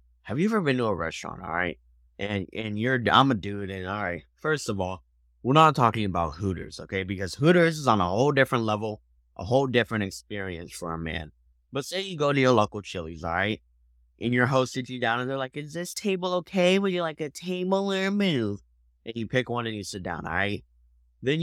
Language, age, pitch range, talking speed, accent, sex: English, 20-39, 90-155 Hz, 235 wpm, American, male